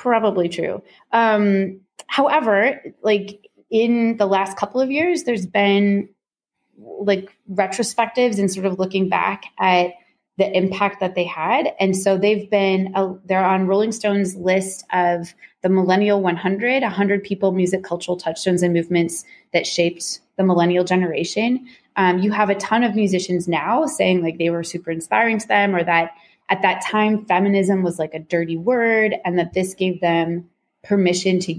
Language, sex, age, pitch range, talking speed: English, female, 20-39, 175-210 Hz, 165 wpm